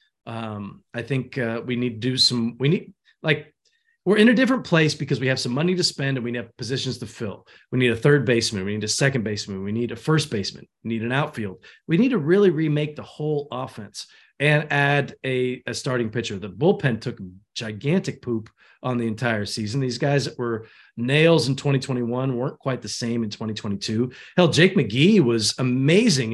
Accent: American